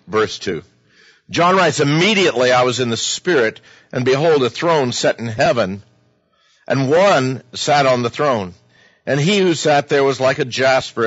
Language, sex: English, male